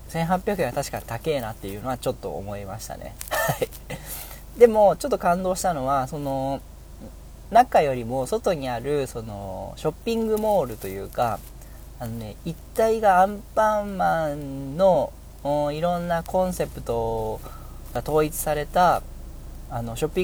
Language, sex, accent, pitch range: Japanese, male, native, 115-165 Hz